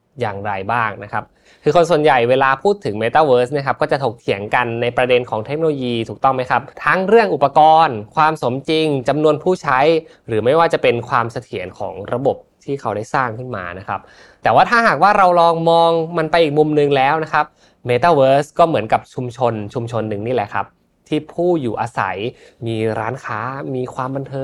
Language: Thai